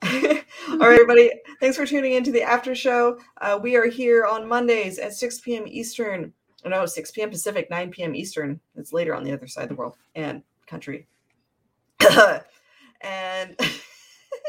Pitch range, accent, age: 160-235 Hz, American, 30-49